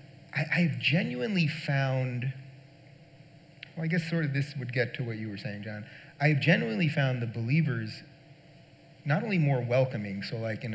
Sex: male